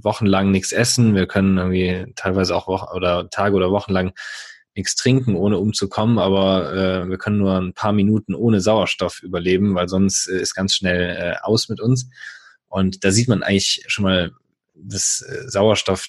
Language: German